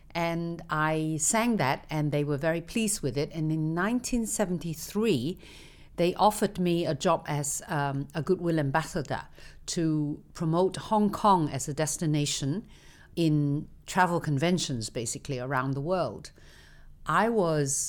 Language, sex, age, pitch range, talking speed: English, female, 50-69, 145-185 Hz, 135 wpm